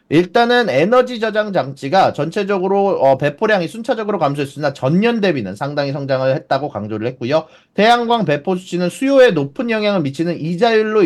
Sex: male